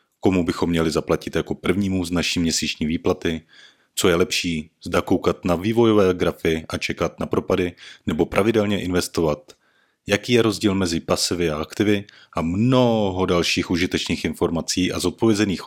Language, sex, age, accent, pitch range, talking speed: Czech, male, 30-49, native, 85-105 Hz, 150 wpm